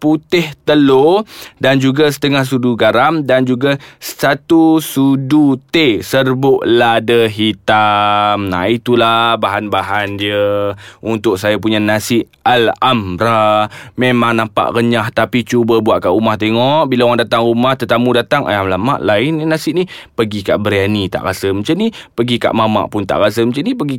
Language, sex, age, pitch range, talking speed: Malay, male, 20-39, 110-160 Hz, 155 wpm